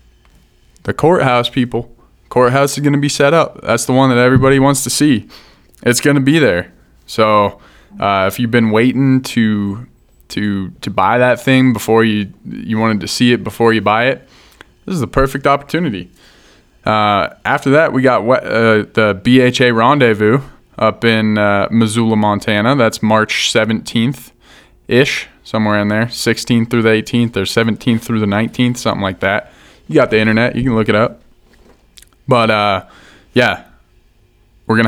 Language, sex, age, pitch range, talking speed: English, male, 20-39, 105-125 Hz, 165 wpm